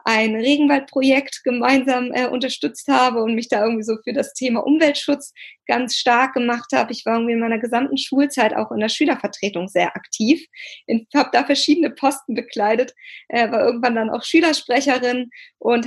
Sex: female